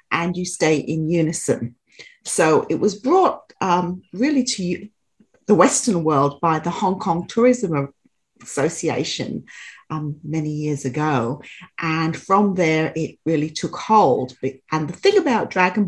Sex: female